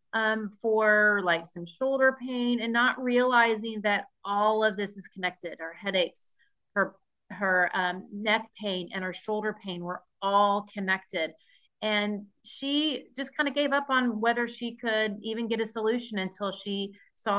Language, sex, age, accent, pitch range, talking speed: English, female, 30-49, American, 185-225 Hz, 160 wpm